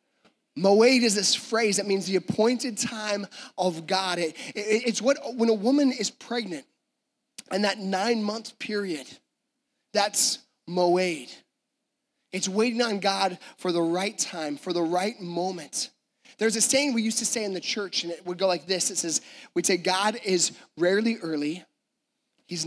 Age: 20-39